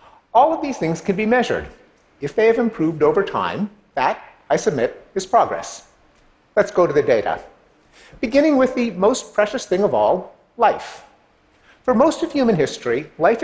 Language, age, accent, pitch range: Chinese, 50-69, American, 155-220 Hz